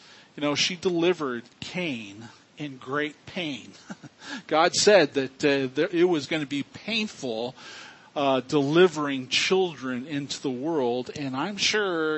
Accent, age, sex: American, 50-69, male